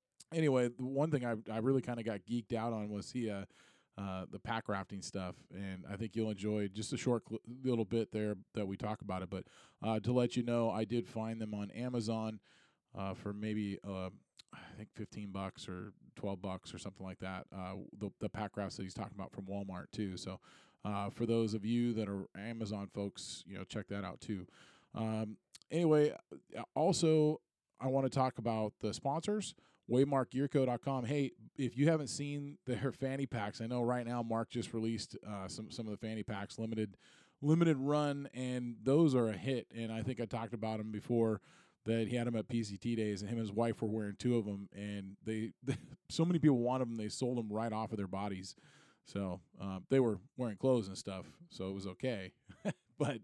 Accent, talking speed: American, 210 wpm